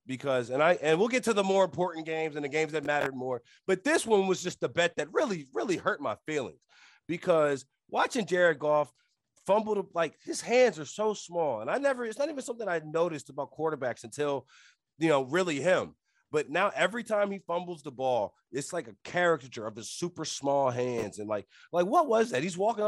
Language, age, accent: English, 30-49, American